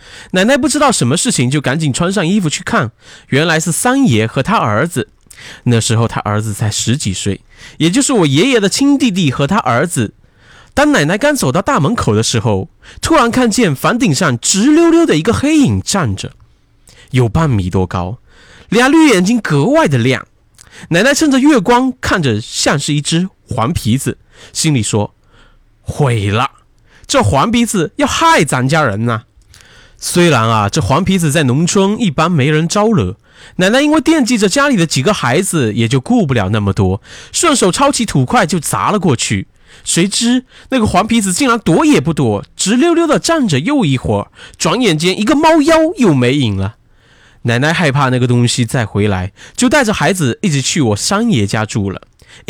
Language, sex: Chinese, male